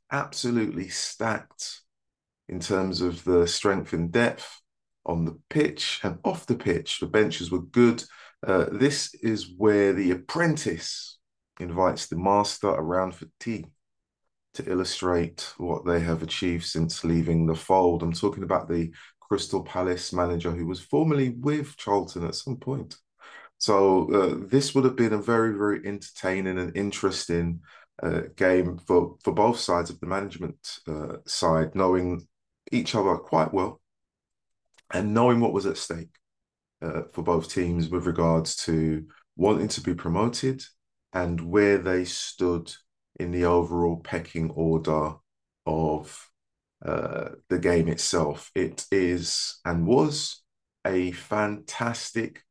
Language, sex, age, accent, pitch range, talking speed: English, male, 20-39, British, 85-105 Hz, 140 wpm